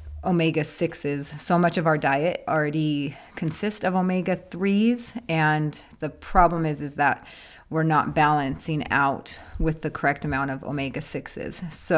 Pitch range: 145-170 Hz